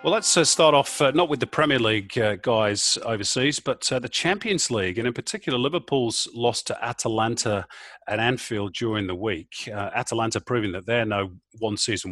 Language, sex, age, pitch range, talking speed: English, male, 40-59, 110-150 Hz, 190 wpm